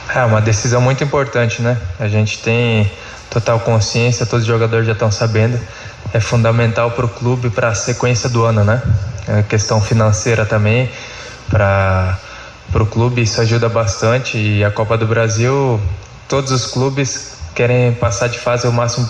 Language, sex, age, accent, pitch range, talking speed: Portuguese, male, 10-29, Brazilian, 110-120 Hz, 165 wpm